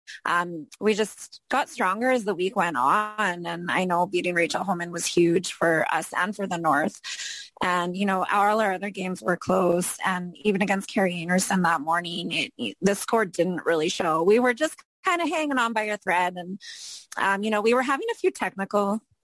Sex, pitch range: female, 180-220 Hz